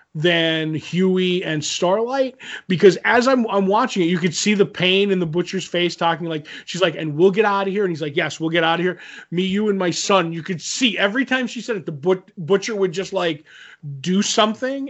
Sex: male